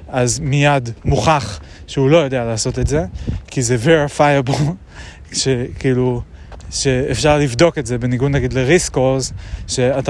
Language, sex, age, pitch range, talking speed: Hebrew, male, 20-39, 115-145 Hz, 130 wpm